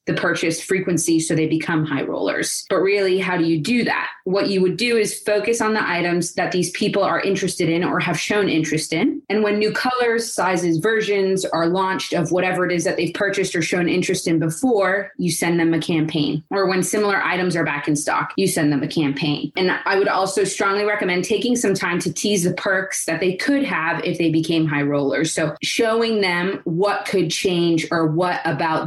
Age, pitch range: 20-39, 165-205 Hz